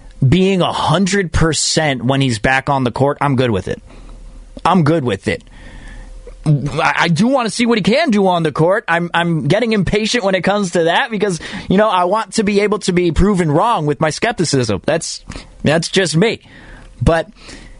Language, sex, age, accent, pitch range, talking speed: English, male, 30-49, American, 135-180 Hz, 200 wpm